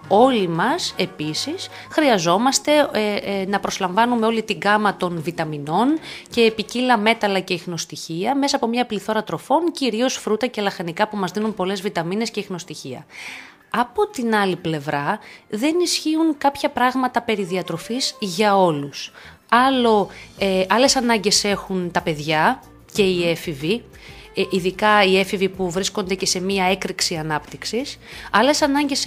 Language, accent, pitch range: Greek, native, 185-250 Hz